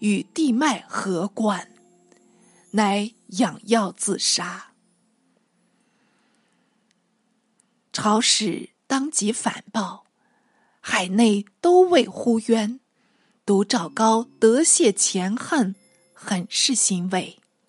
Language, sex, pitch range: Chinese, female, 200-260 Hz